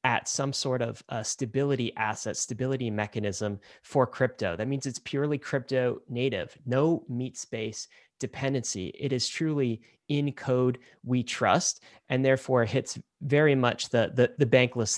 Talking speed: 150 wpm